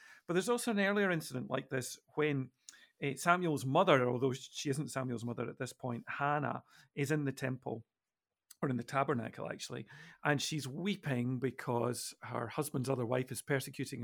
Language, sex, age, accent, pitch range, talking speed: English, male, 50-69, British, 125-160 Hz, 170 wpm